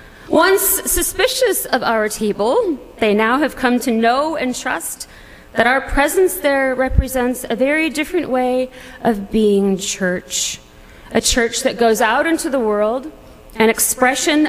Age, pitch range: 40-59, 210-315 Hz